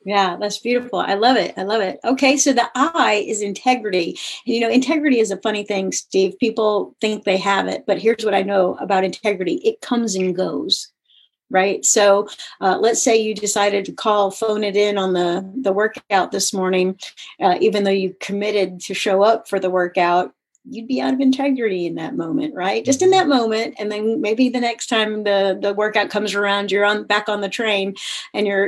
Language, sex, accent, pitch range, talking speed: English, female, American, 195-245 Hz, 210 wpm